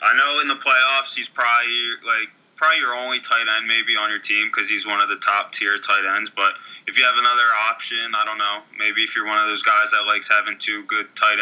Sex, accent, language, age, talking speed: male, American, English, 20-39, 245 wpm